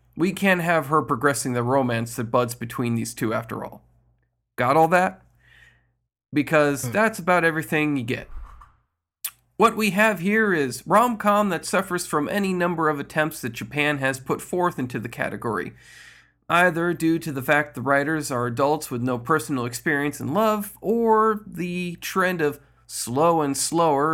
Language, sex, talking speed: English, male, 165 wpm